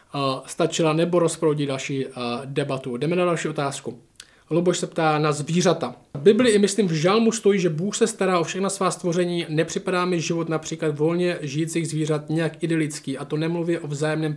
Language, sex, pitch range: Czech, male, 150-185 Hz